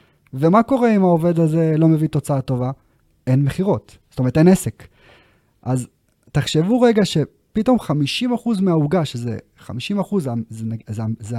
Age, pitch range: 30-49, 125-160 Hz